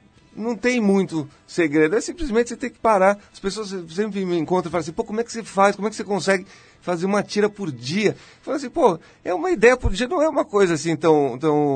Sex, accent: male, Brazilian